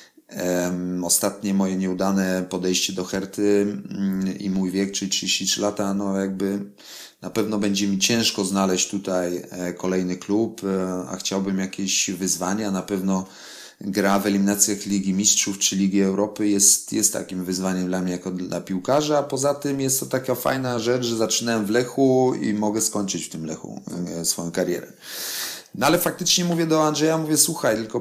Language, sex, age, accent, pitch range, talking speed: Polish, male, 30-49, native, 95-110 Hz, 155 wpm